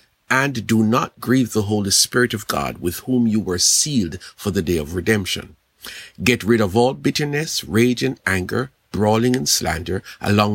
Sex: male